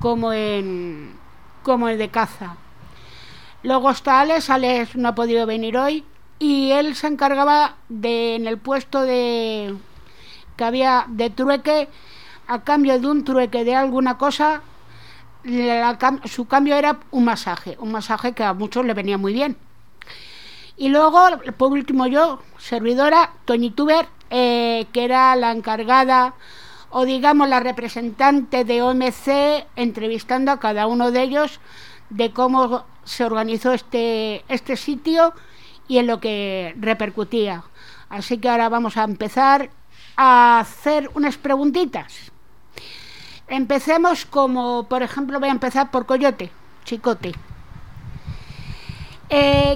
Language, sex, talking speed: Spanish, female, 130 wpm